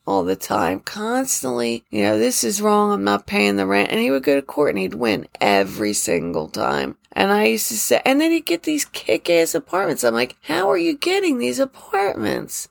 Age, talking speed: 30-49, 215 wpm